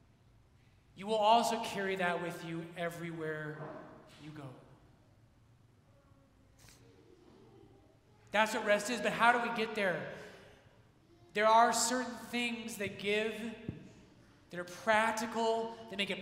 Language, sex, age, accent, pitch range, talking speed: English, male, 30-49, American, 130-195 Hz, 120 wpm